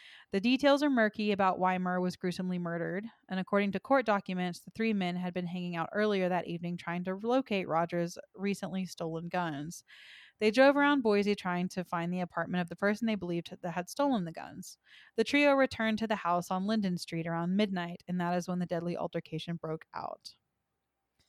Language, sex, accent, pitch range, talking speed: English, female, American, 175-205 Hz, 200 wpm